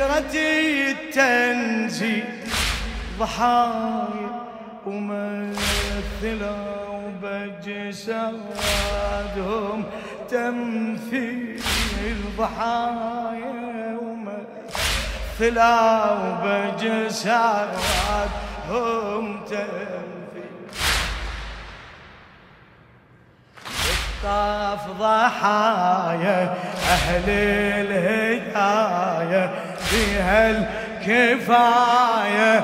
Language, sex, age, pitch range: Arabic, male, 30-49, 205-240 Hz